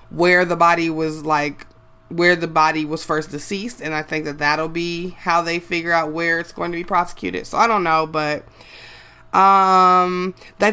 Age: 20-39